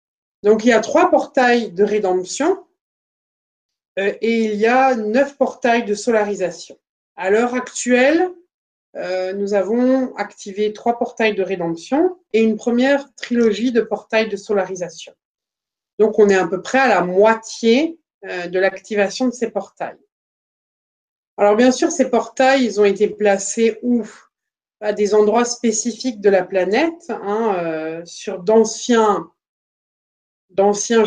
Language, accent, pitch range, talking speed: French, French, 195-240 Hz, 140 wpm